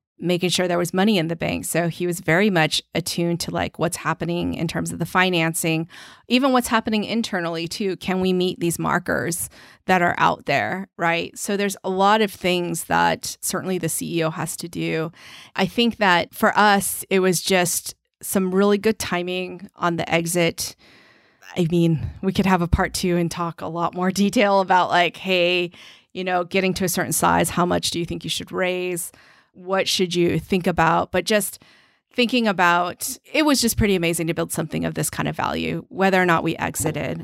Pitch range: 170-190 Hz